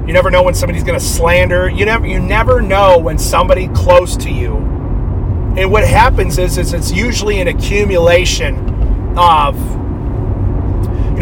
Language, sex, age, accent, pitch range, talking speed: English, male, 30-49, American, 90-100 Hz, 155 wpm